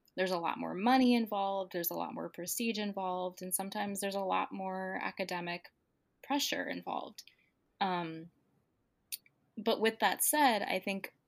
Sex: female